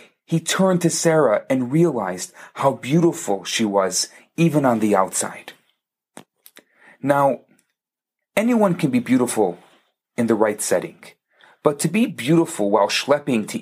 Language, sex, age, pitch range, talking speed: English, male, 40-59, 125-190 Hz, 130 wpm